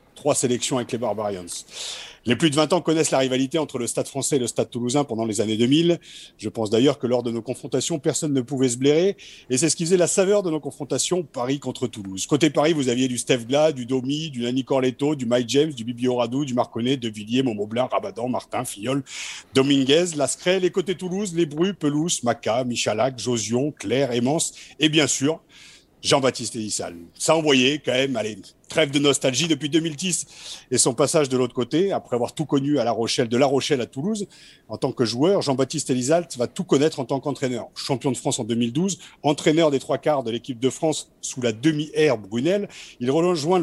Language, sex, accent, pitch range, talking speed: French, male, French, 125-160 Hz, 215 wpm